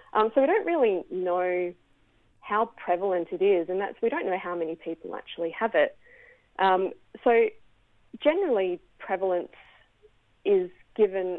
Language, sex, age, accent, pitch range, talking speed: English, female, 30-49, Australian, 175-225 Hz, 140 wpm